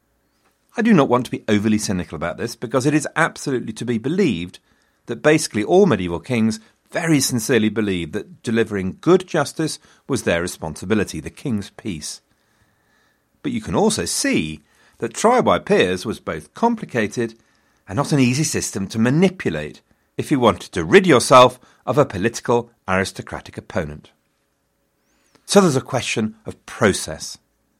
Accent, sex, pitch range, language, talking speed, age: British, male, 95-140 Hz, English, 155 wpm, 40-59